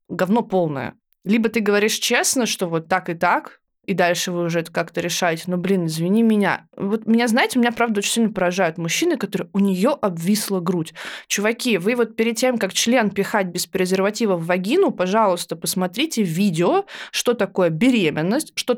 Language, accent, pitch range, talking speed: Russian, native, 185-240 Hz, 175 wpm